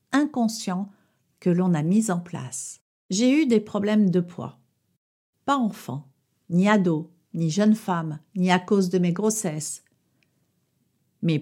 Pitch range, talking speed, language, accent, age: 175-215 Hz, 140 wpm, French, French, 60-79